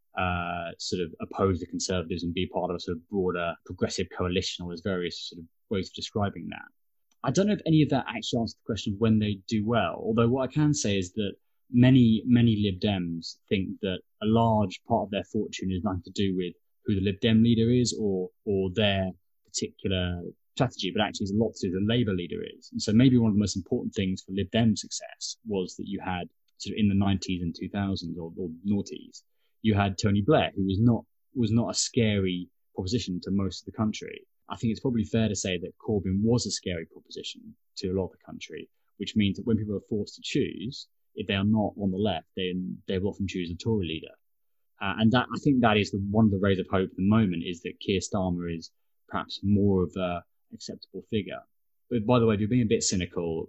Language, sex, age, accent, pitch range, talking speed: English, male, 20-39, British, 95-110 Hz, 240 wpm